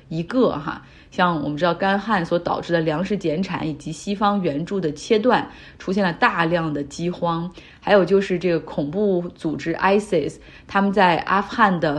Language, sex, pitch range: Chinese, female, 165-200 Hz